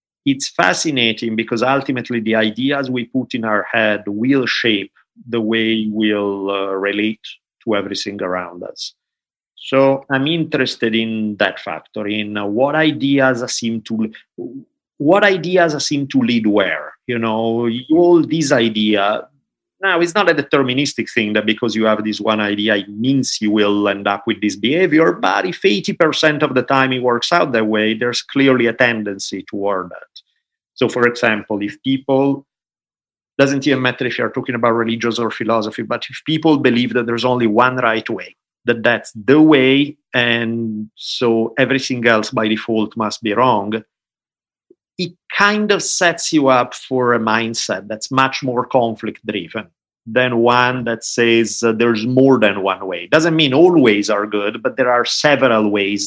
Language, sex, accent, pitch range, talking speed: English, male, Italian, 110-135 Hz, 170 wpm